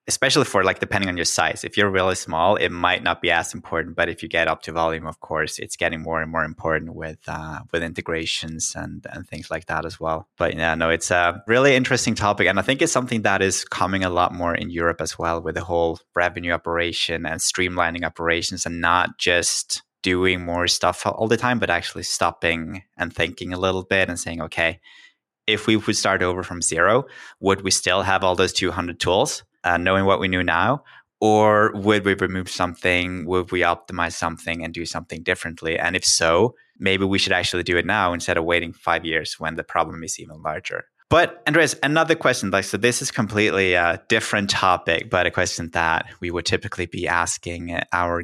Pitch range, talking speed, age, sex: 85-95 Hz, 215 wpm, 20-39, male